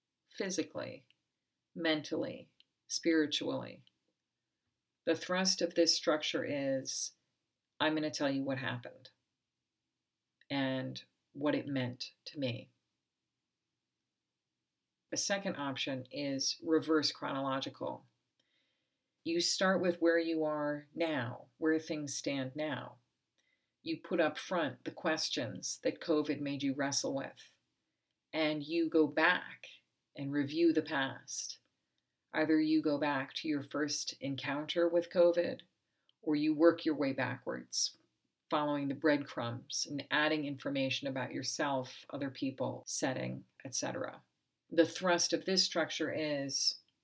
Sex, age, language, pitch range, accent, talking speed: female, 40-59, English, 135-160 Hz, American, 120 wpm